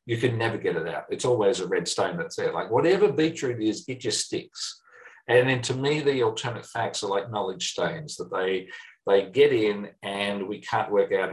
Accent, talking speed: Australian, 215 wpm